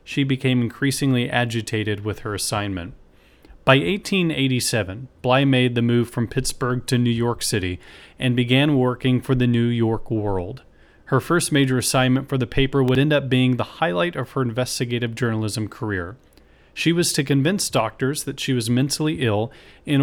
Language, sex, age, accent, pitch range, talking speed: English, male, 30-49, American, 115-140 Hz, 170 wpm